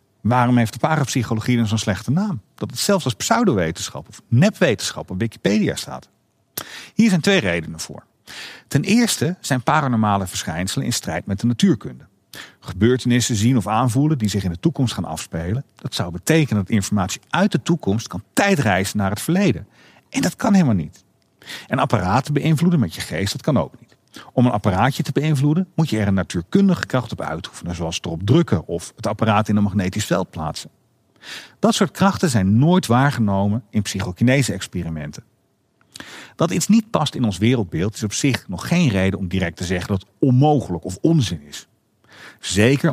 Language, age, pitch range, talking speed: Dutch, 40-59, 95-150 Hz, 180 wpm